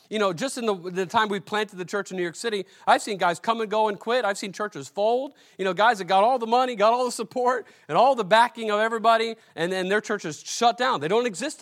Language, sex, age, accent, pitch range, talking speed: English, male, 40-59, American, 180-230 Hz, 280 wpm